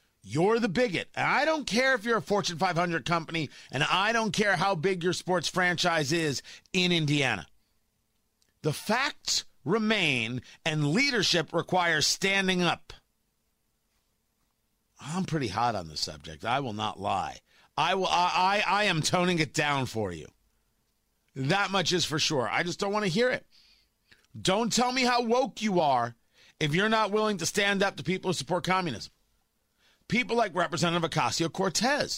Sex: male